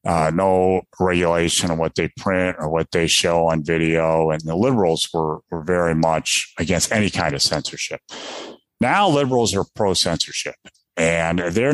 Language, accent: English, American